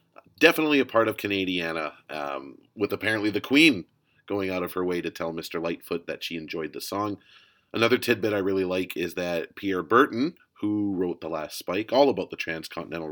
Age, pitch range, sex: 30-49, 90-115 Hz, male